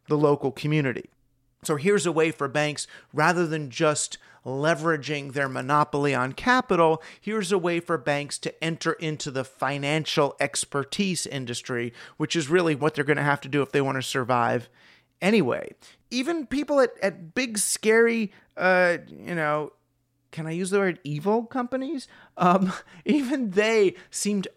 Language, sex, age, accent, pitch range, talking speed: English, male, 40-59, American, 145-195 Hz, 160 wpm